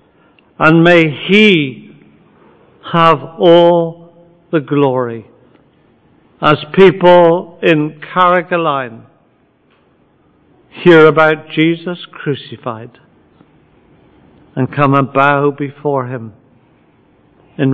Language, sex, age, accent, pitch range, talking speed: English, male, 50-69, British, 130-155 Hz, 75 wpm